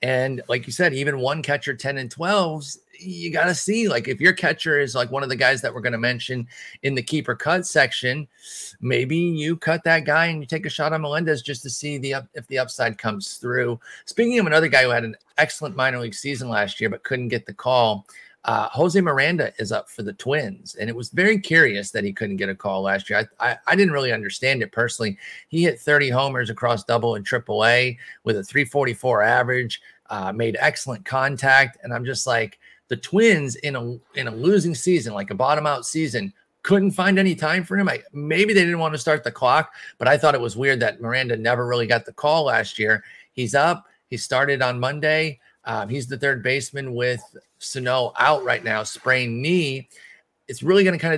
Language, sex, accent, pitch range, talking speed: English, male, American, 120-155 Hz, 220 wpm